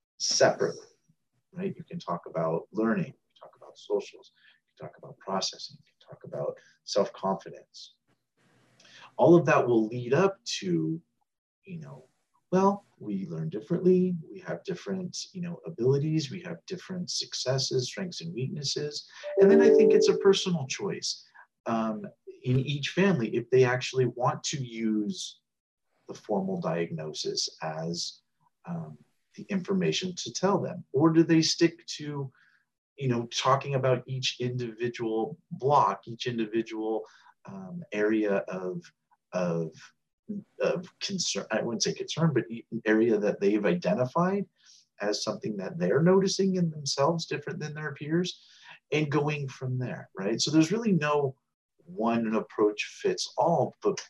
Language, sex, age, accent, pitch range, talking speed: English, male, 40-59, American, 120-185 Hz, 145 wpm